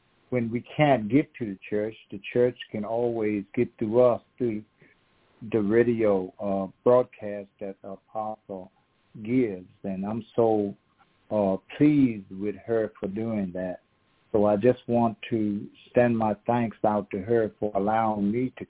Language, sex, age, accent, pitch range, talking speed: English, male, 60-79, American, 100-120 Hz, 155 wpm